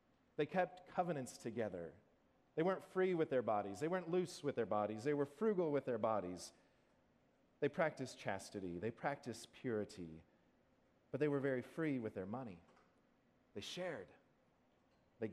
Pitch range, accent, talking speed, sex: 105-150 Hz, American, 155 wpm, male